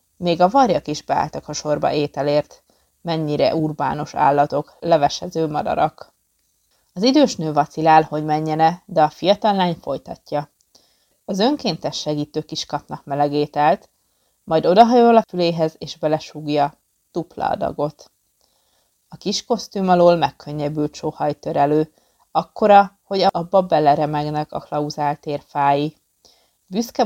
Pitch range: 150-175 Hz